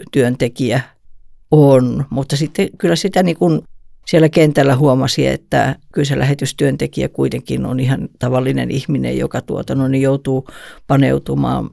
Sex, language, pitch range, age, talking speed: female, Finnish, 130-155 Hz, 50-69, 125 wpm